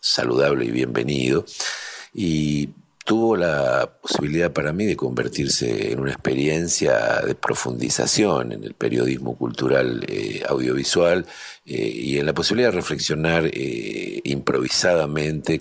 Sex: male